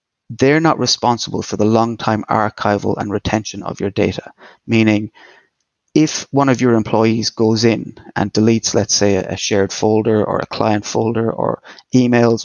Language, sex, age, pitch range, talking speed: English, male, 30-49, 110-125 Hz, 165 wpm